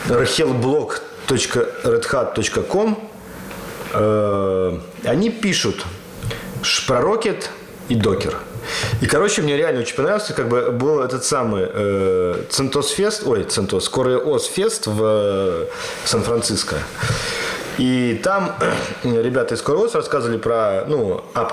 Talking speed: 90 wpm